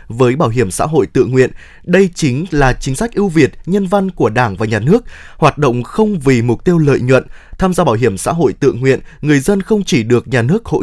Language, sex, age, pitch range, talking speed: Vietnamese, male, 20-39, 125-185 Hz, 250 wpm